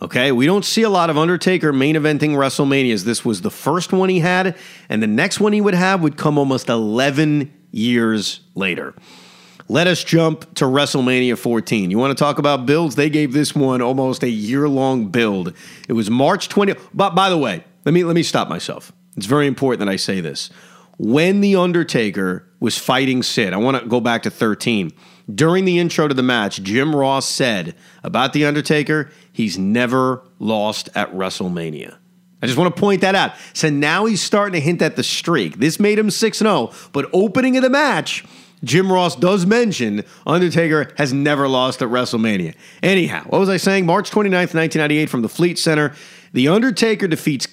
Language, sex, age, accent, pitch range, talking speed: English, male, 40-59, American, 130-180 Hz, 195 wpm